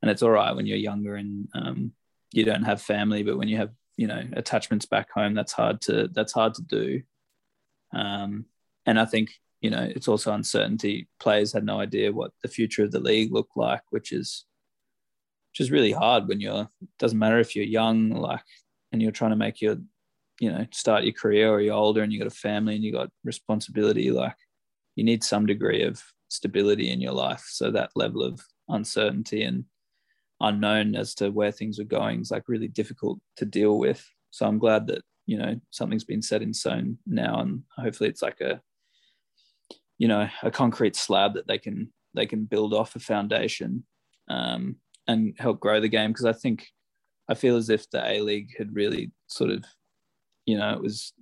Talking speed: 200 wpm